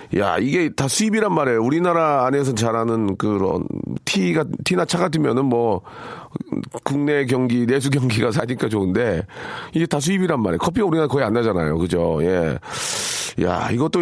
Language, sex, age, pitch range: Korean, male, 40-59, 115-170 Hz